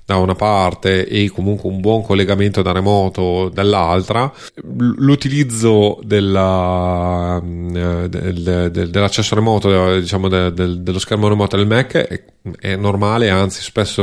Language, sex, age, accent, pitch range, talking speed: Italian, male, 30-49, native, 95-105 Hz, 120 wpm